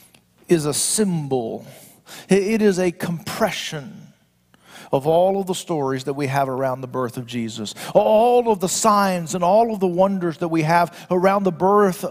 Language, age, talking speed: English, 50-69, 175 wpm